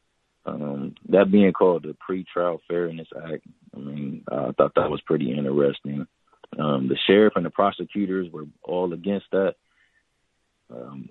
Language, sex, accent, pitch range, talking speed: English, male, American, 75-90 Hz, 145 wpm